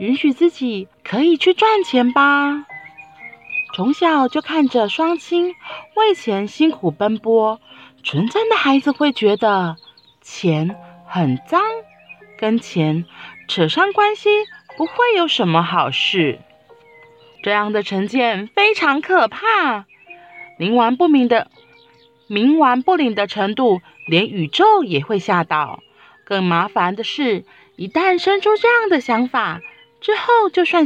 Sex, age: female, 30-49